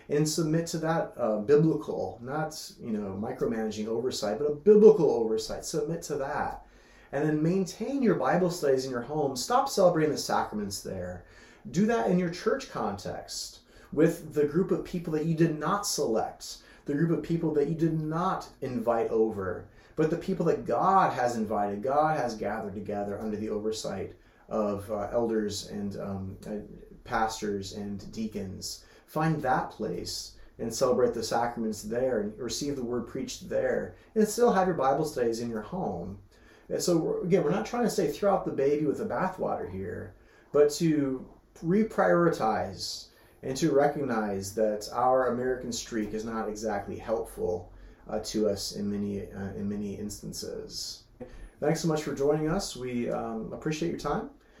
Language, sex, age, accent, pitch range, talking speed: English, male, 30-49, American, 105-165 Hz, 165 wpm